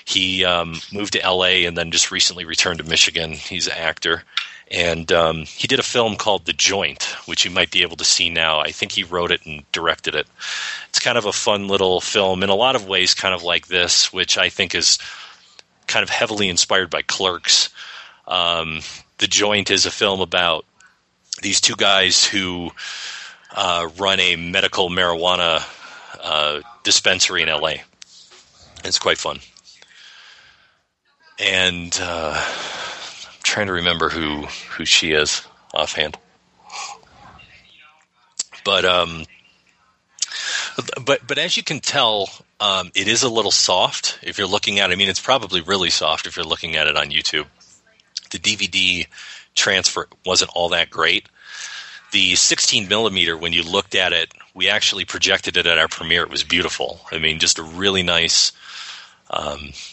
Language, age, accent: English, 40-59, American